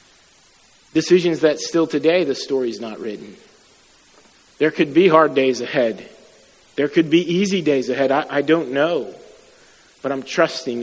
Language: English